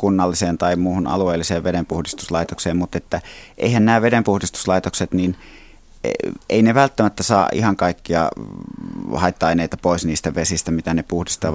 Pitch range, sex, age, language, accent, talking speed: 85-100 Hz, male, 30-49, Finnish, native, 125 wpm